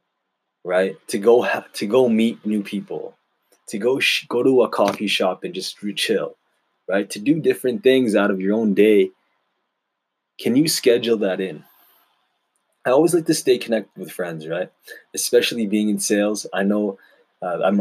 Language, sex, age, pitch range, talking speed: English, male, 20-39, 95-115 Hz, 175 wpm